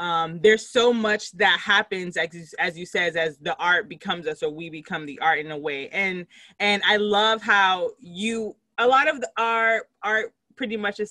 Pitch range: 165-220 Hz